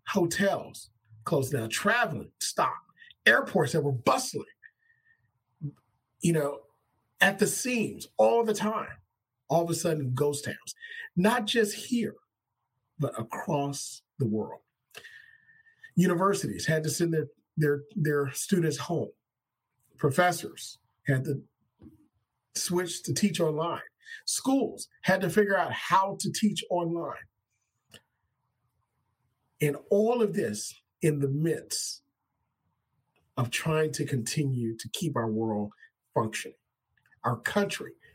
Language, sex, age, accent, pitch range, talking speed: English, male, 40-59, American, 120-195 Hz, 115 wpm